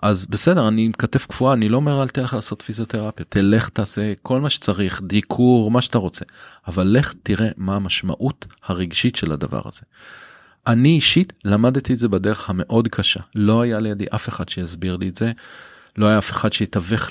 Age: 30-49